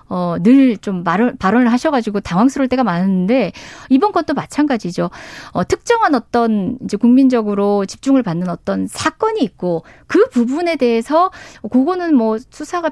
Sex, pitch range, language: female, 200-315 Hz, Korean